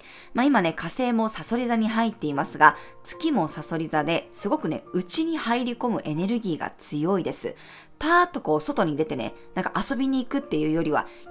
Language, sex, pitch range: Japanese, female, 160-255 Hz